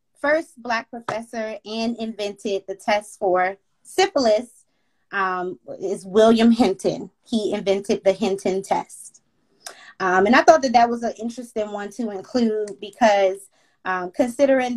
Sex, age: female, 20-39